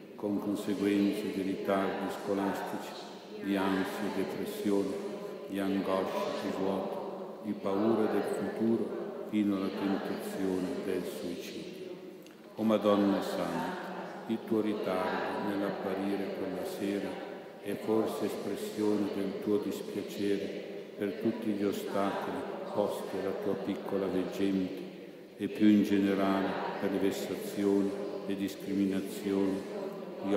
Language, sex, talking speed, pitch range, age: Italian, male, 115 wpm, 95-100 Hz, 50-69